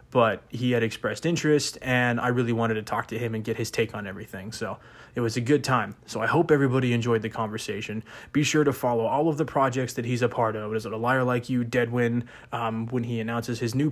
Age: 20-39